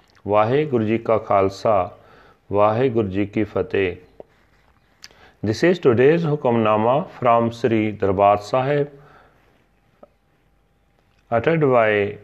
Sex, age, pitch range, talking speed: male, 40-59, 105-130 Hz, 90 wpm